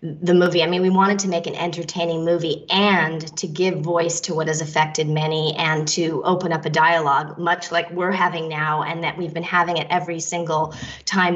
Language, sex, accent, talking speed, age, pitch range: English, female, American, 210 wpm, 20-39, 165-190 Hz